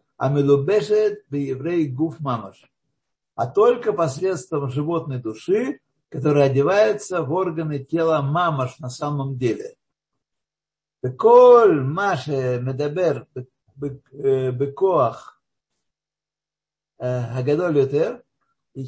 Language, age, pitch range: Russian, 60-79, 135-185 Hz